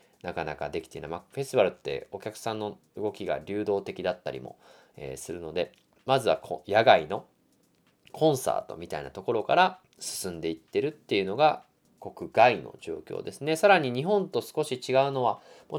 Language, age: Japanese, 20-39